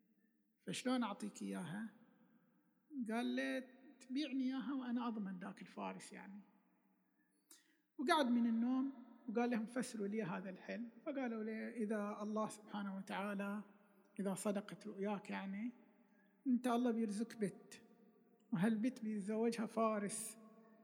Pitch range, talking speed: 210-240 Hz, 110 wpm